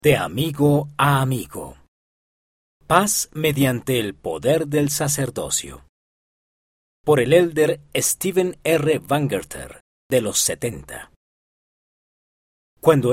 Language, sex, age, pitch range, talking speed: Spanish, male, 40-59, 100-145 Hz, 90 wpm